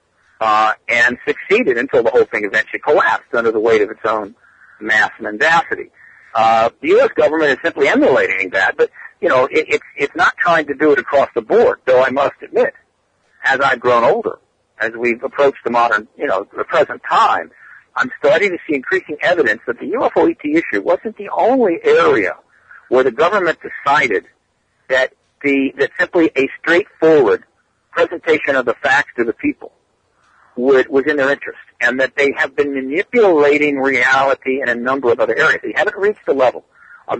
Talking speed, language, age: 180 wpm, English, 60-79